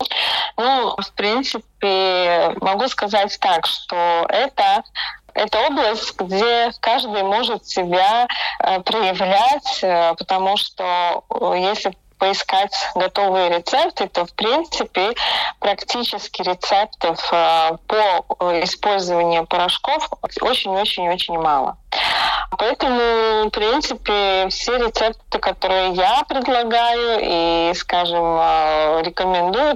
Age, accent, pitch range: 20-39, native, 180-240 Hz